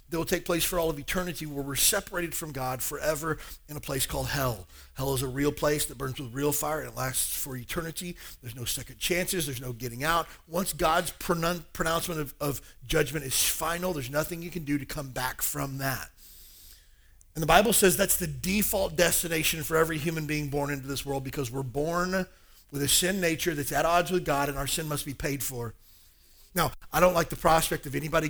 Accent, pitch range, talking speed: American, 135-165 Hz, 220 wpm